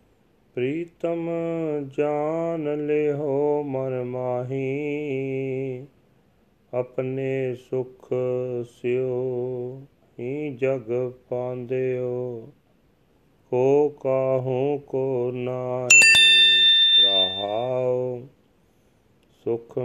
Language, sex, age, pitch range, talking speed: Punjabi, male, 40-59, 125-145 Hz, 55 wpm